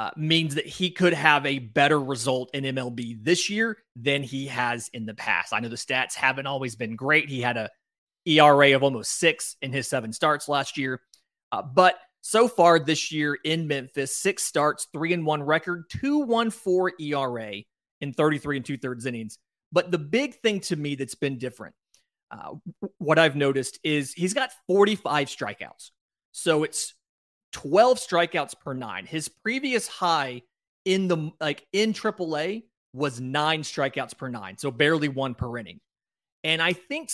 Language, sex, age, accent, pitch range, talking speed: English, male, 30-49, American, 135-175 Hz, 180 wpm